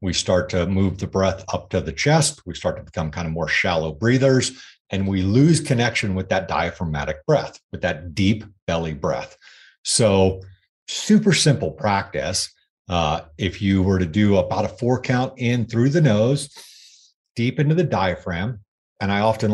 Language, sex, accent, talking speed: English, male, American, 175 wpm